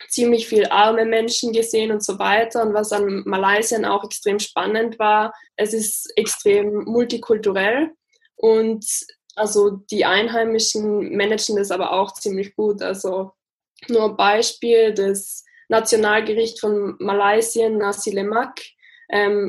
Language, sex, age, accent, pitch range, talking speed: German, female, 10-29, German, 205-240 Hz, 125 wpm